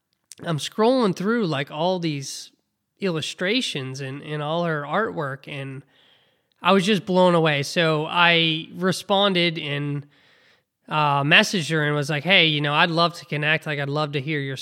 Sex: male